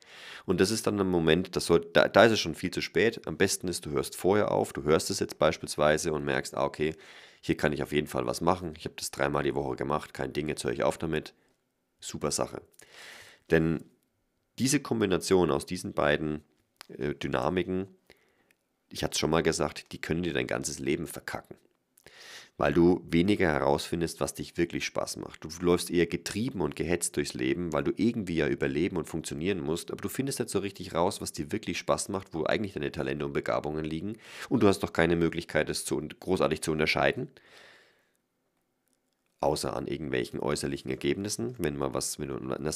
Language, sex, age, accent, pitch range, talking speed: German, male, 30-49, German, 70-90 Hz, 200 wpm